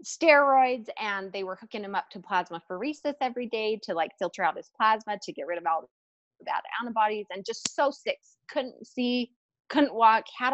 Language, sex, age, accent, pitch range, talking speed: English, female, 30-49, American, 205-275 Hz, 200 wpm